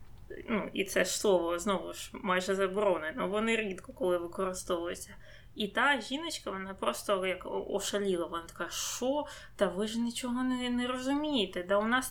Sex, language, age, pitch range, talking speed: female, Ukrainian, 20-39, 190-230 Hz, 155 wpm